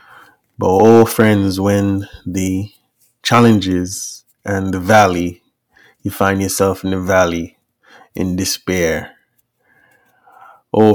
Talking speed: 100 wpm